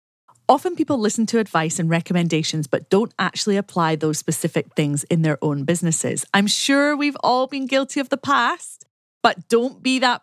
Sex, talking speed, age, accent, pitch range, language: female, 180 wpm, 30-49, British, 165-245 Hz, English